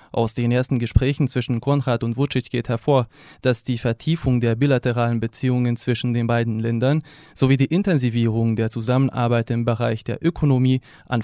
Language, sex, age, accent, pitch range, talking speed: German, male, 20-39, German, 120-150 Hz, 160 wpm